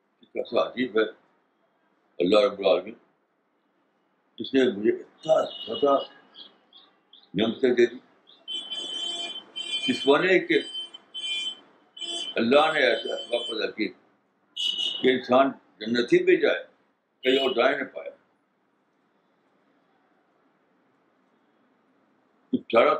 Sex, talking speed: male, 75 wpm